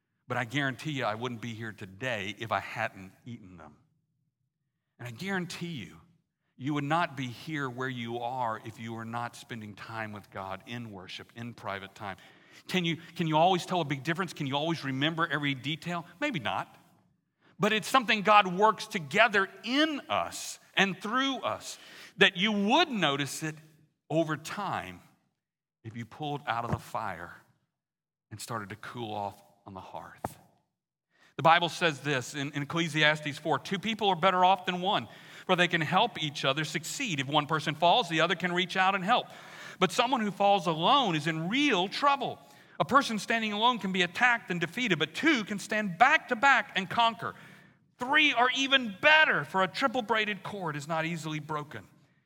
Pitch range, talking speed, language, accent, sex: 135-195 Hz, 185 wpm, English, American, male